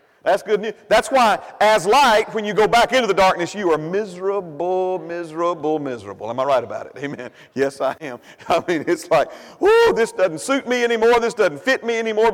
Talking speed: 210 wpm